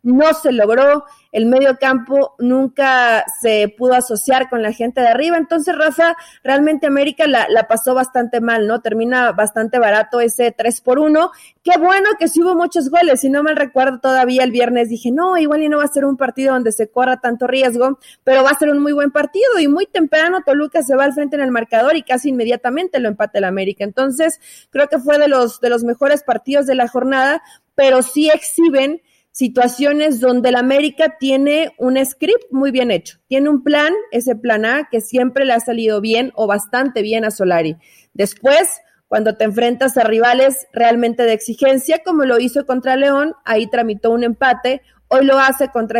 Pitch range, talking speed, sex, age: 235-295 Hz, 200 wpm, female, 30-49